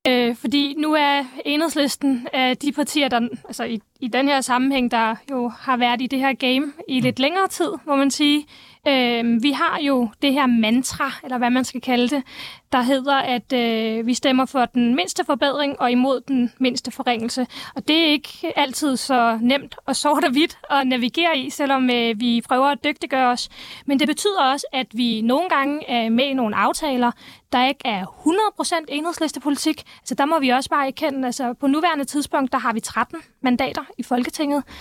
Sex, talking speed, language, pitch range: female, 200 wpm, Danish, 250-295 Hz